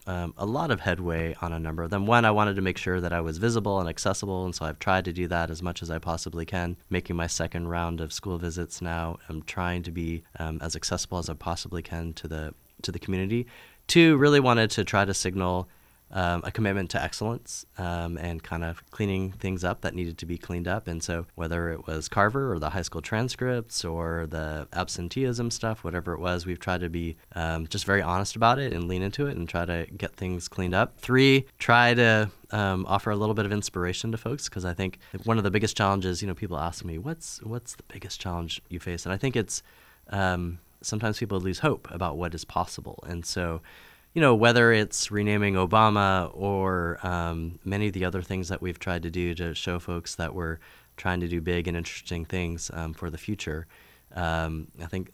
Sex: male